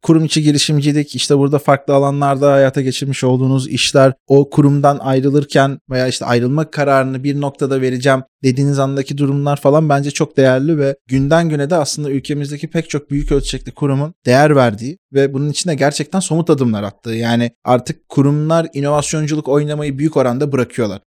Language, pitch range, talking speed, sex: Turkish, 130-155 Hz, 160 wpm, male